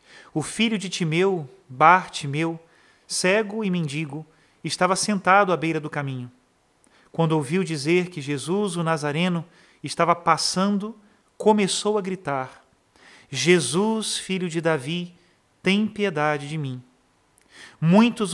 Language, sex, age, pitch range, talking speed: Portuguese, male, 40-59, 155-195 Hz, 115 wpm